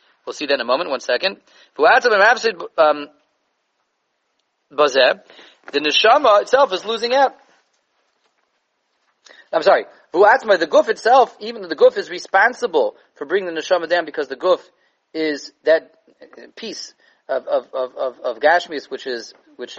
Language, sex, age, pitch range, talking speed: English, male, 30-49, 155-225 Hz, 135 wpm